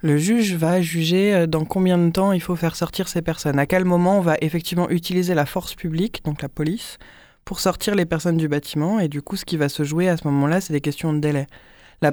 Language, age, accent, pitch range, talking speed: French, 20-39, French, 135-175 Hz, 245 wpm